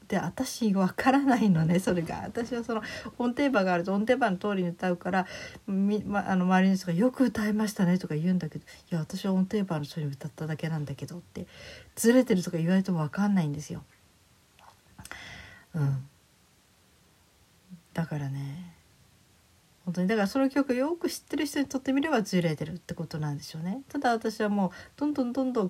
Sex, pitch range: female, 165-215 Hz